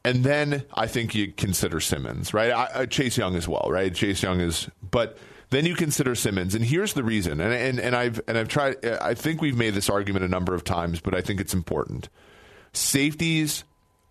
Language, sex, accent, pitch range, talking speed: English, male, American, 95-120 Hz, 215 wpm